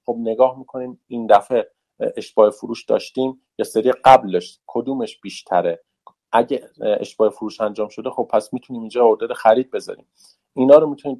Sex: male